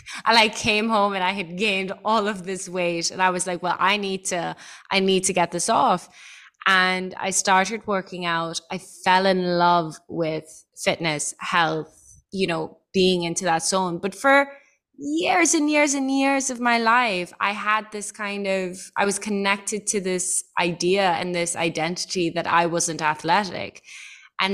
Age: 20-39